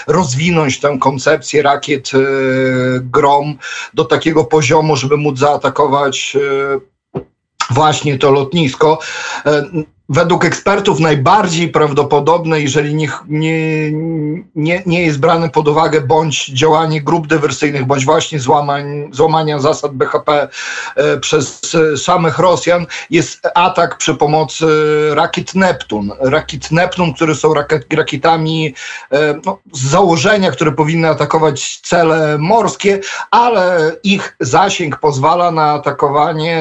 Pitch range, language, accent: 150-165 Hz, Polish, native